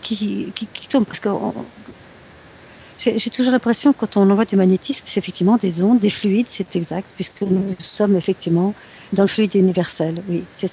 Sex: female